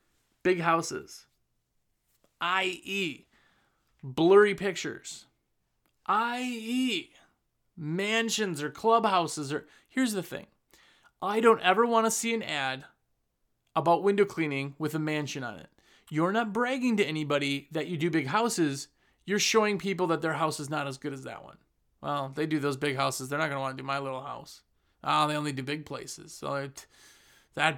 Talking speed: 165 wpm